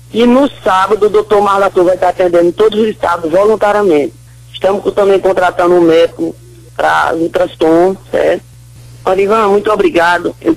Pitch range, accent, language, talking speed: 160-210 Hz, Brazilian, Portuguese, 160 wpm